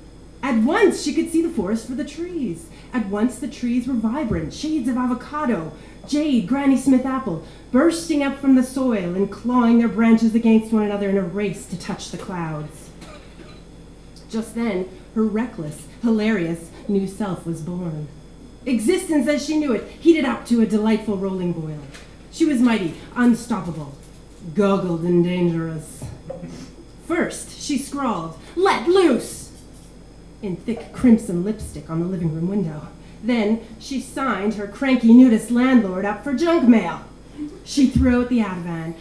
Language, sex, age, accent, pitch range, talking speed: English, female, 30-49, American, 180-255 Hz, 155 wpm